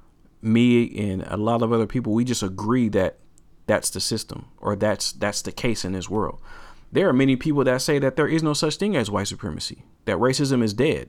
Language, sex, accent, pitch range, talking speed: English, male, American, 100-120 Hz, 220 wpm